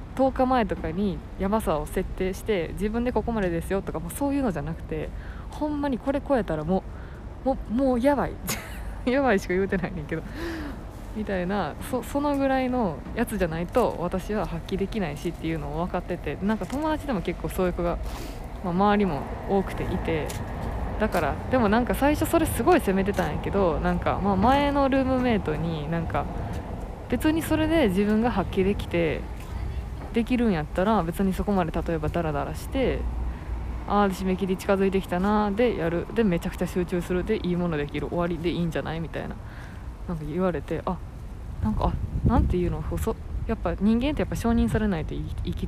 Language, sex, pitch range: Japanese, female, 170-230 Hz